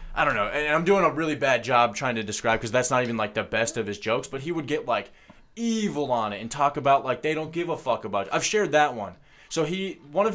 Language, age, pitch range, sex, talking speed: English, 20-39, 110-145 Hz, male, 290 wpm